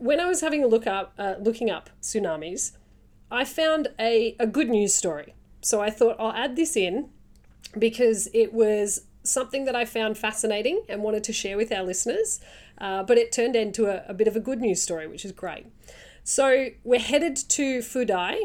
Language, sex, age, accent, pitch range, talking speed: English, female, 30-49, Australian, 195-245 Hz, 200 wpm